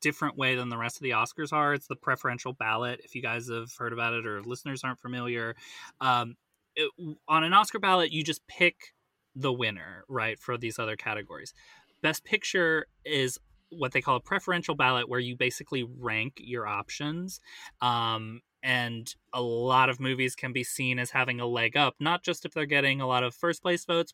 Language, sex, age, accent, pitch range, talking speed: English, male, 20-39, American, 115-150 Hz, 195 wpm